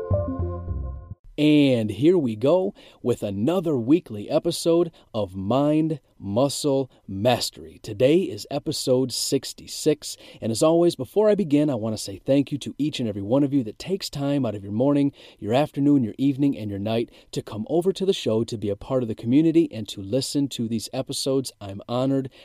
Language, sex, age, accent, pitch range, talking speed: English, male, 40-59, American, 105-140 Hz, 185 wpm